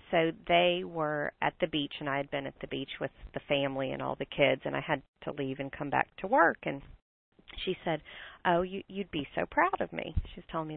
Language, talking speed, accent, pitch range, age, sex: English, 235 wpm, American, 150-180 Hz, 40-59, female